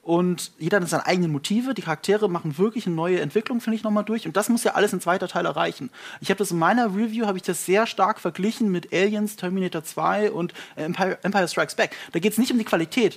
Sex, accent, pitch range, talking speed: male, German, 170-215 Hz, 245 wpm